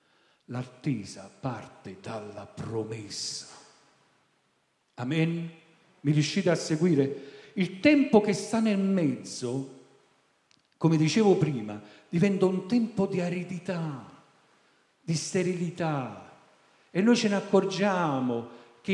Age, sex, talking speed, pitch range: 50-69, male, 100 wpm, 125-180 Hz